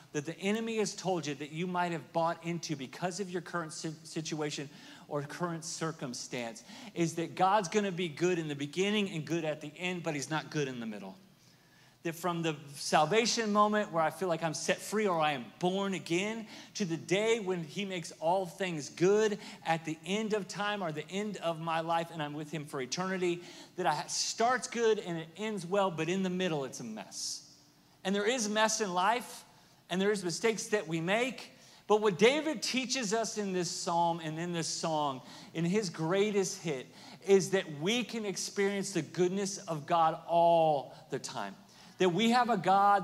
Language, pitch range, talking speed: English, 165-205 Hz, 200 wpm